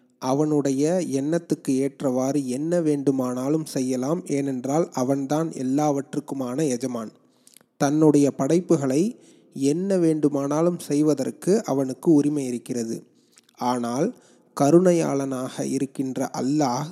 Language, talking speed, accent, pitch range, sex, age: Tamil, 80 wpm, native, 135-160 Hz, male, 30-49